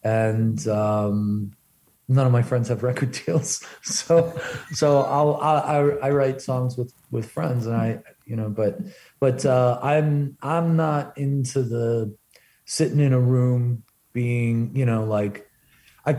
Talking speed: 150 wpm